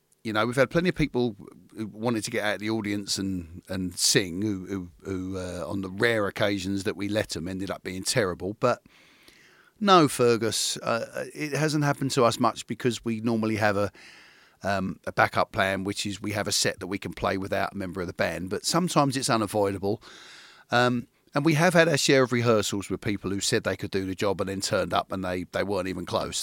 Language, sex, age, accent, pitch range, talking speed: English, male, 40-59, British, 100-130 Hz, 230 wpm